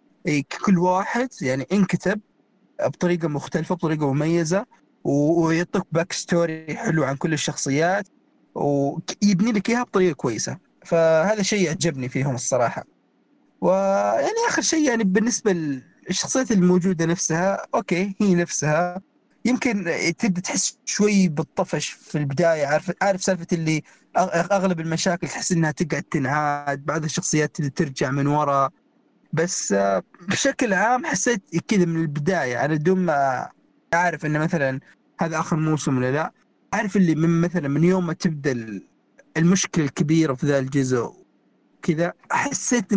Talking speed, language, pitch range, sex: 130 wpm, Arabic, 155-195 Hz, male